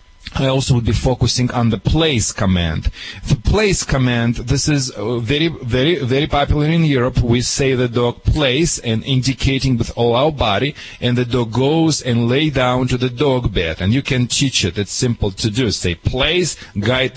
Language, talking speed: English, 190 wpm